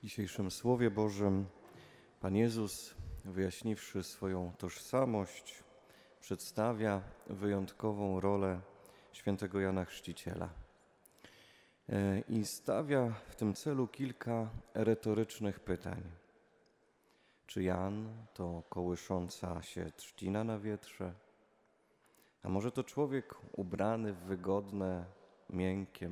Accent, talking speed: native, 90 wpm